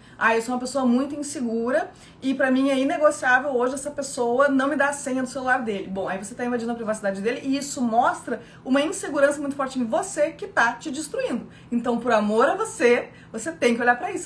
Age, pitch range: 20-39, 180-275 Hz